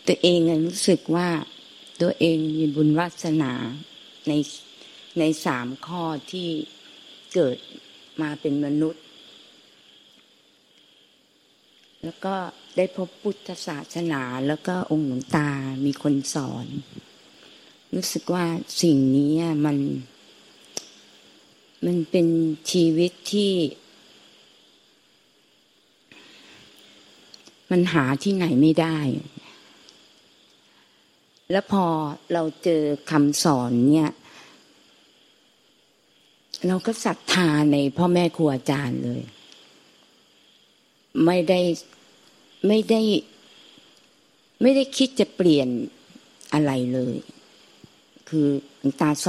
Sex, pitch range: female, 145-175 Hz